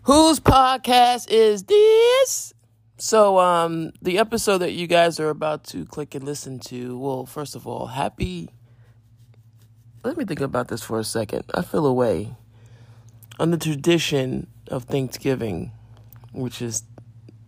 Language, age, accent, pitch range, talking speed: English, 20-39, American, 115-150 Hz, 140 wpm